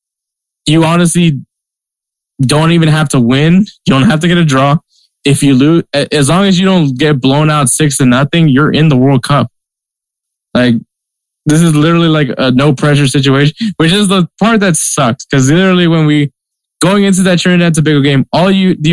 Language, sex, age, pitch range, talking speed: English, male, 20-39, 130-160 Hz, 190 wpm